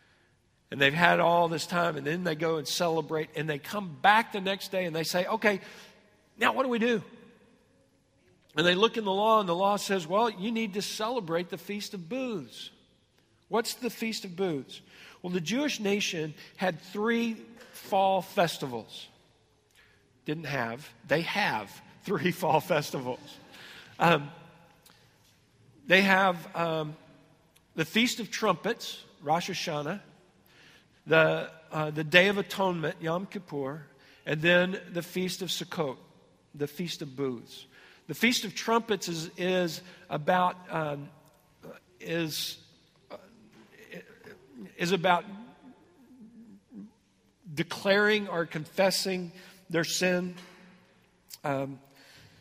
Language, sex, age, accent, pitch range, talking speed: English, male, 50-69, American, 160-200 Hz, 130 wpm